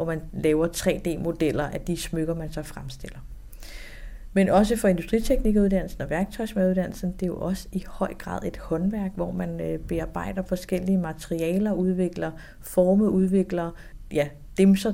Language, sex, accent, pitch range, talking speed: Danish, female, native, 170-195 Hz, 140 wpm